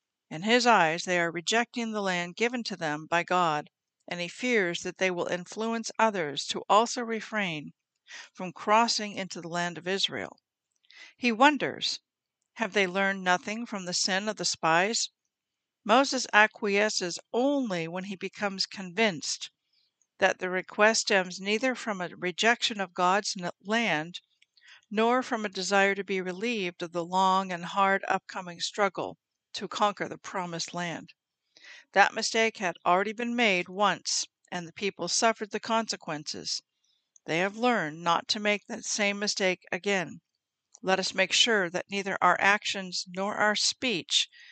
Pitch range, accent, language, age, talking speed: 180-220 Hz, American, English, 60-79, 155 wpm